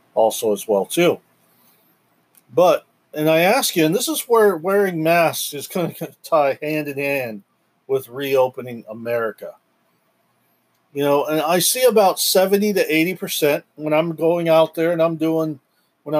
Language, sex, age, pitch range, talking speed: English, male, 40-59, 135-170 Hz, 170 wpm